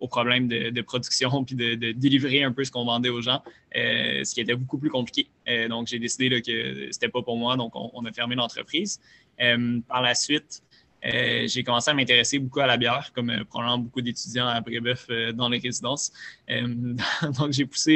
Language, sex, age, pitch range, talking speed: French, male, 20-39, 120-130 Hz, 225 wpm